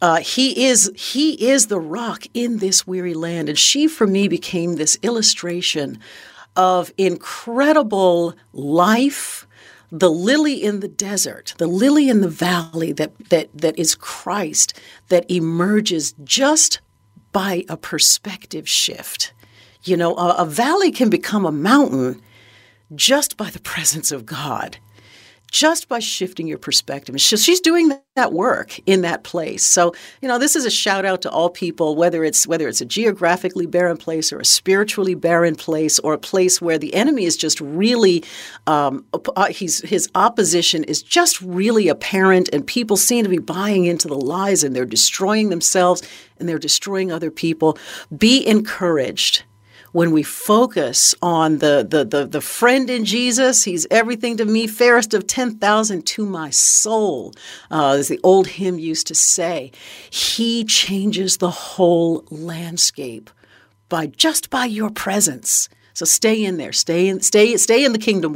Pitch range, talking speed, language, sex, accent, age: 160-220 Hz, 160 wpm, English, female, American, 50-69